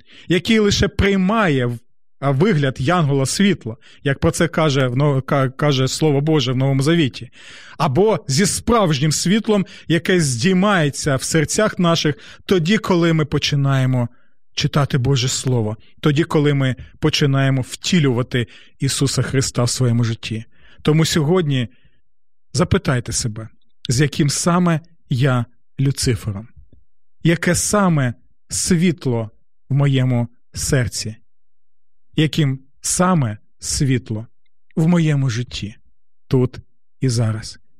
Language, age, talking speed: Ukrainian, 30-49, 105 wpm